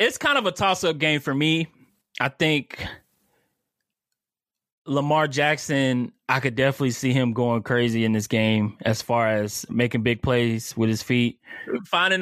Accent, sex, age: American, male, 20-39